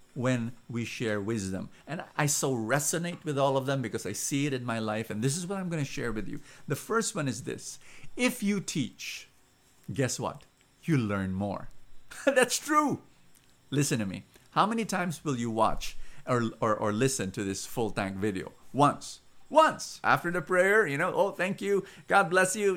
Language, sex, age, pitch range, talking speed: English, male, 50-69, 120-200 Hz, 200 wpm